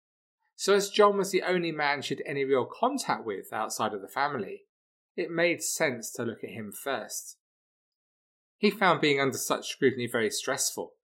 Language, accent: English, British